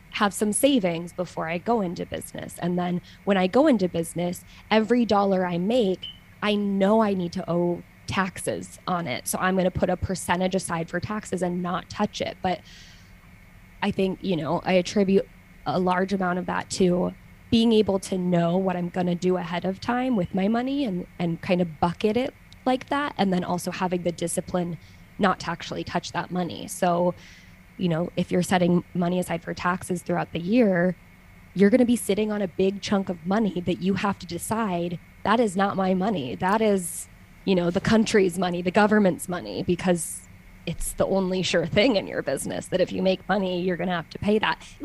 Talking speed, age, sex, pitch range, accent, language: 205 wpm, 20-39, female, 175-205 Hz, American, English